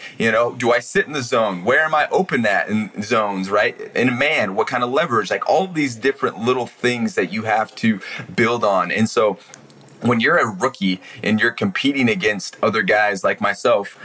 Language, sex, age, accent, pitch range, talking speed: English, male, 30-49, American, 100-125 Hz, 205 wpm